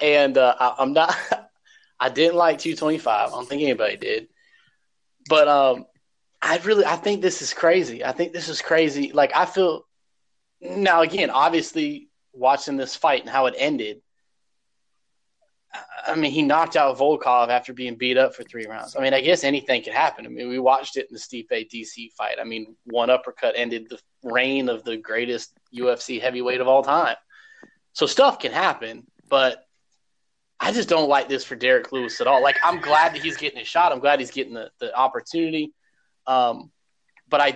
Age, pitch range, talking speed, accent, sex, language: 20-39, 125-165 Hz, 190 wpm, American, male, English